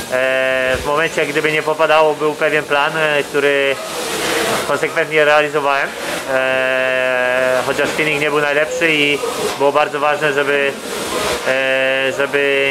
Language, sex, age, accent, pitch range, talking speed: English, male, 20-39, Polish, 130-150 Hz, 105 wpm